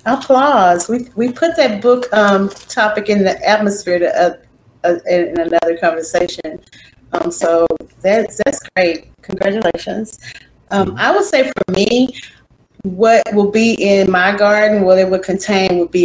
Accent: American